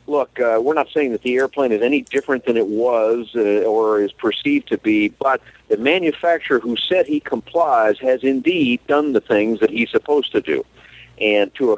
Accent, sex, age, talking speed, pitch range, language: American, male, 50-69, 205 wpm, 120-180 Hz, English